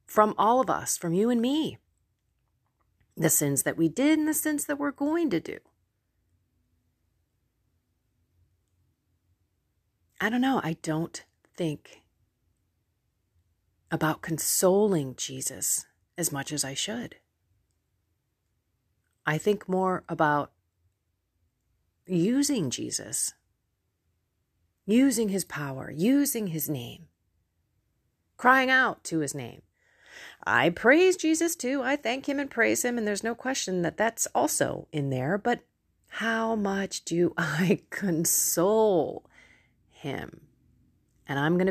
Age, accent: 30-49, American